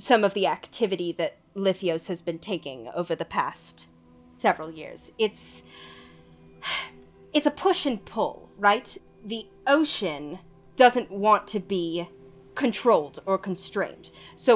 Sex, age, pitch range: female, 30-49, 175-235 Hz